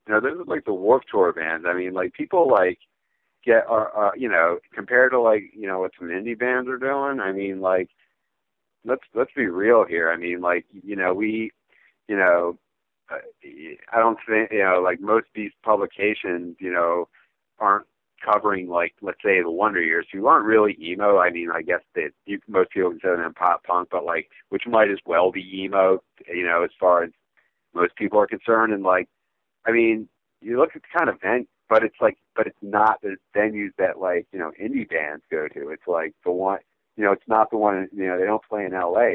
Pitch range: 90-110 Hz